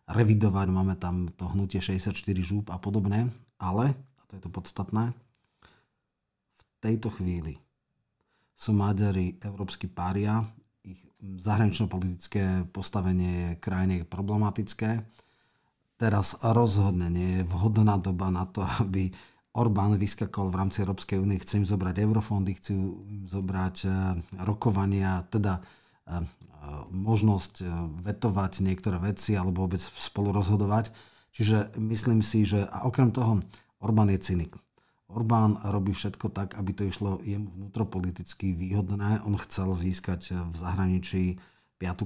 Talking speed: 120 wpm